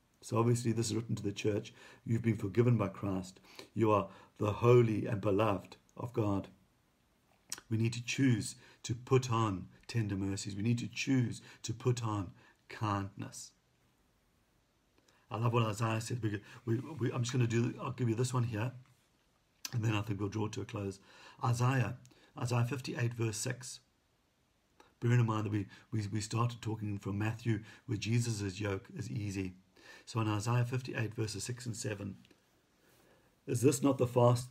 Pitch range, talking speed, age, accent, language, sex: 105-125 Hz, 165 wpm, 50-69, British, English, male